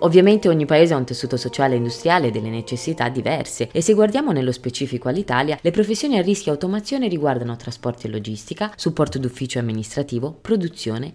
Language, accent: Italian, native